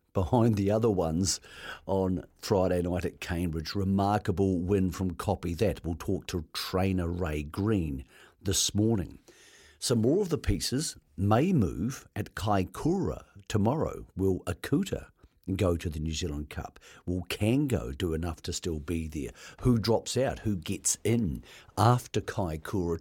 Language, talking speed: English, 145 wpm